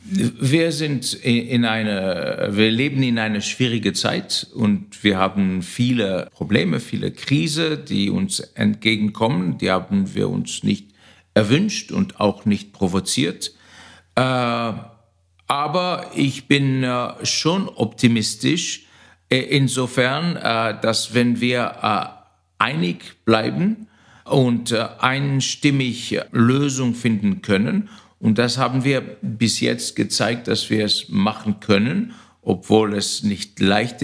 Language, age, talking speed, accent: German, 50-69, 110 wpm, German